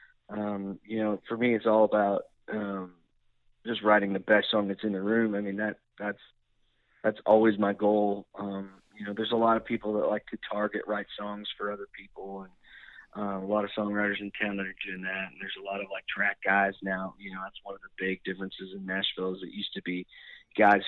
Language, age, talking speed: English, 40-59, 230 wpm